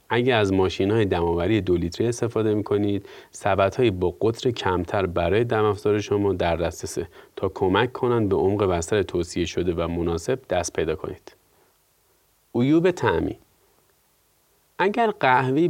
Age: 30-49